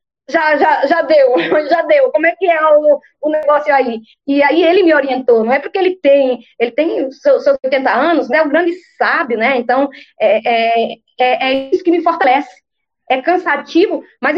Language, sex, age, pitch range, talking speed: Portuguese, female, 20-39, 255-340 Hz, 195 wpm